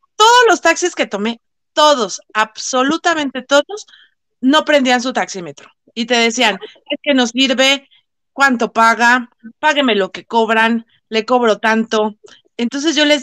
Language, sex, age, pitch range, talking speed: Spanish, female, 30-49, 230-295 Hz, 140 wpm